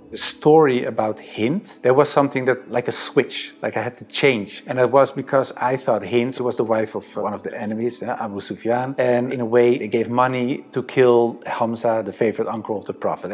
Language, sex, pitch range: English, male, 110-130 Hz